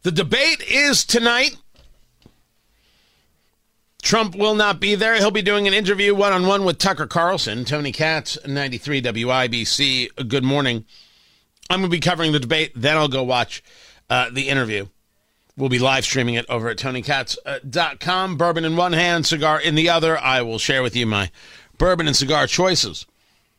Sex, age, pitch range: male, 50-69, 130-190 Hz